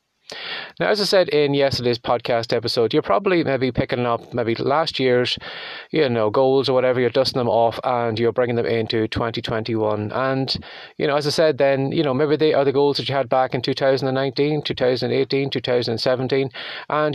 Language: English